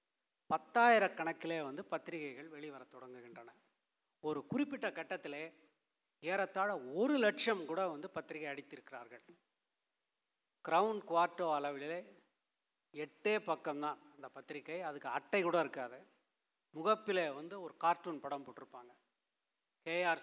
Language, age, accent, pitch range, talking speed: Tamil, 30-49, native, 150-195 Hz, 100 wpm